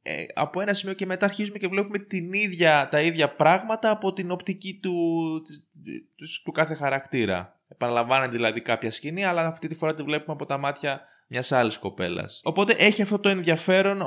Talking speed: 180 wpm